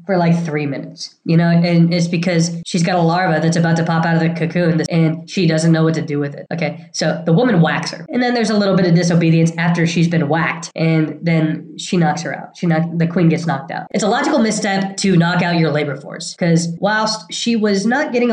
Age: 10-29